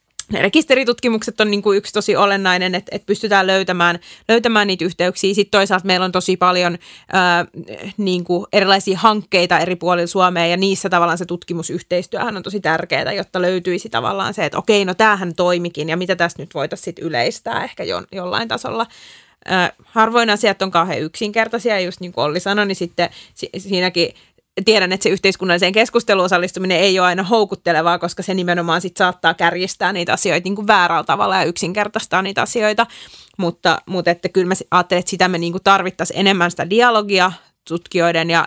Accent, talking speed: native, 160 wpm